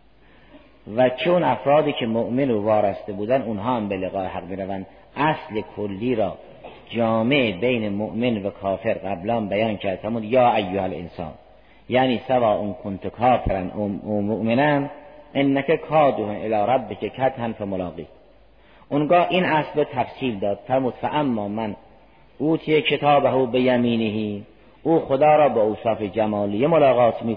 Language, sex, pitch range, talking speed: Persian, male, 100-135 Hz, 140 wpm